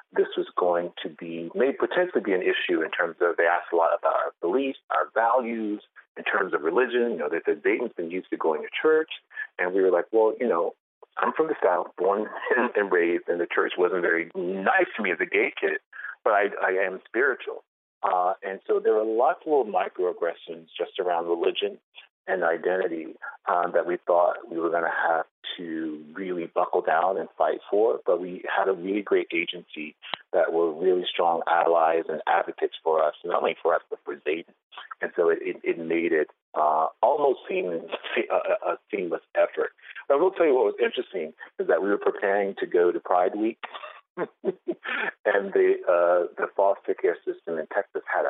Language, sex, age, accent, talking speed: English, male, 40-59, American, 205 wpm